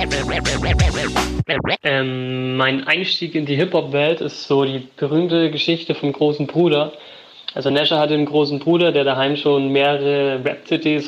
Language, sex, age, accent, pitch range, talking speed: German, male, 20-39, German, 140-160 Hz, 135 wpm